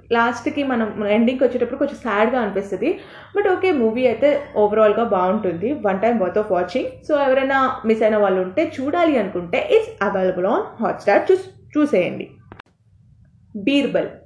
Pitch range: 205-270 Hz